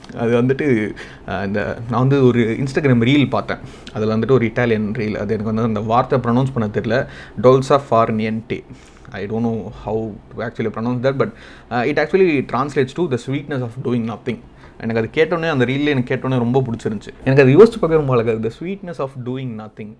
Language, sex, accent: Tamil, male, native